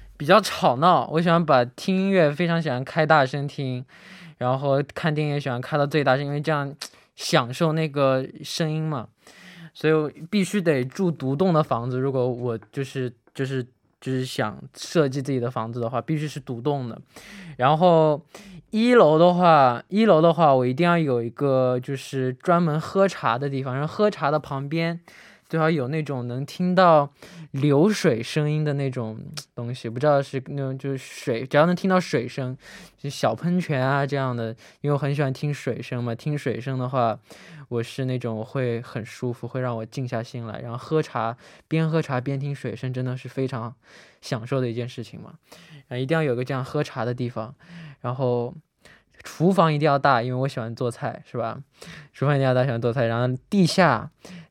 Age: 20-39